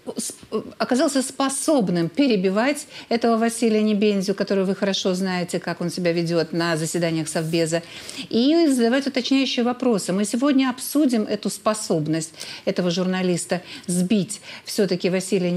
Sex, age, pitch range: female, 50-69, 175-230 Hz